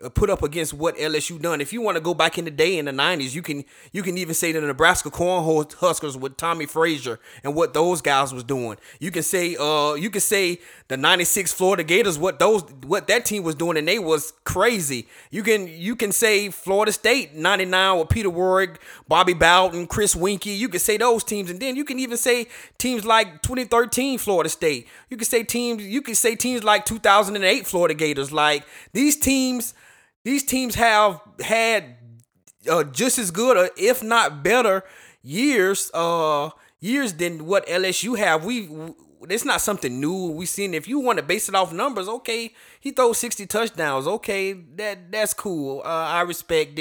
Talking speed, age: 190 wpm, 30-49